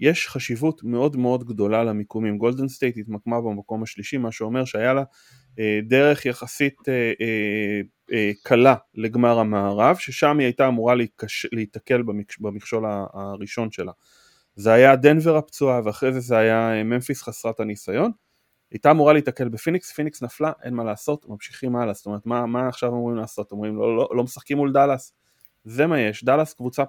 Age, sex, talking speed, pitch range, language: 20-39, male, 165 wpm, 110-130 Hz, Hebrew